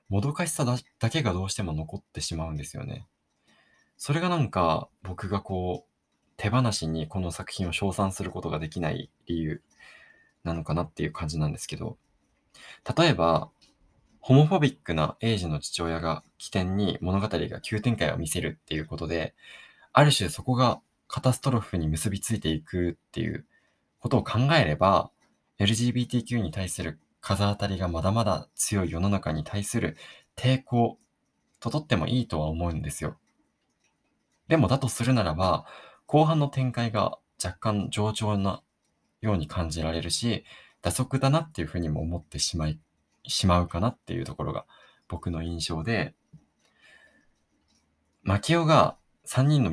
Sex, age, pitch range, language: male, 20-39, 80-120 Hz, Japanese